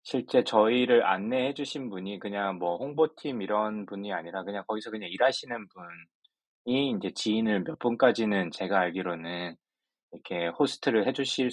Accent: native